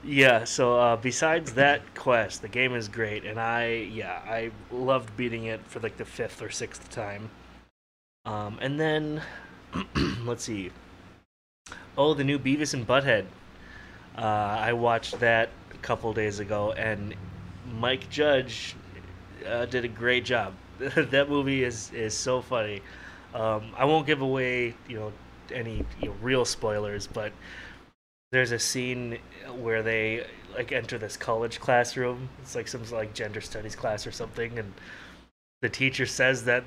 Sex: male